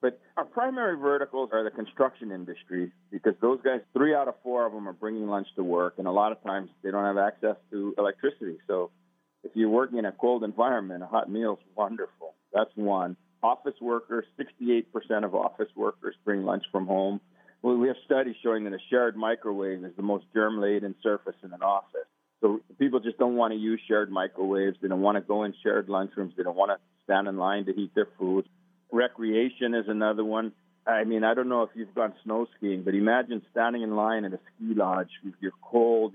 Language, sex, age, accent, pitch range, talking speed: English, male, 40-59, American, 95-115 Hz, 210 wpm